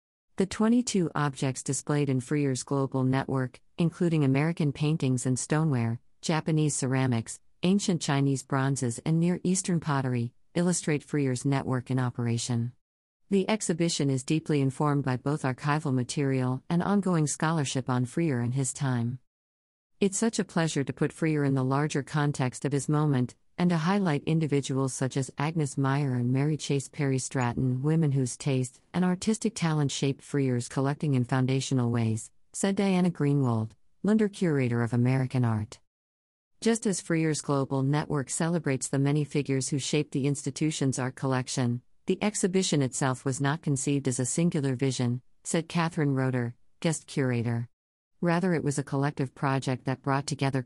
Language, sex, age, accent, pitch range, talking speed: English, female, 50-69, American, 130-155 Hz, 155 wpm